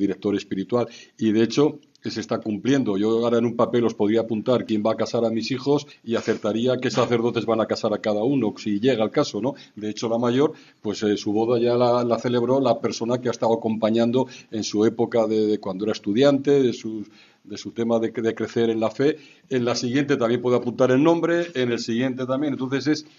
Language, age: Spanish, 50-69